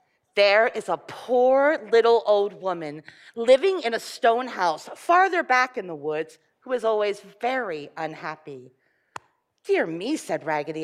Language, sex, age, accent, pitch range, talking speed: English, female, 40-59, American, 200-315 Hz, 145 wpm